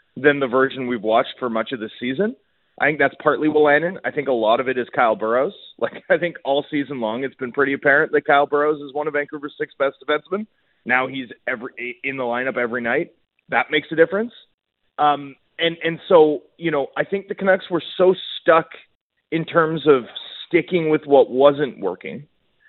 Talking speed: 205 wpm